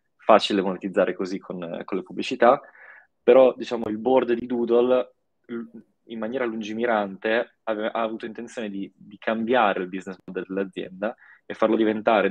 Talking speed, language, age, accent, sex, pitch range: 140 wpm, Italian, 20-39, native, male, 95-110 Hz